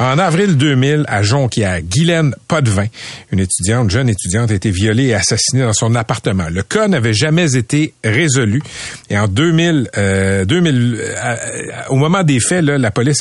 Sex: male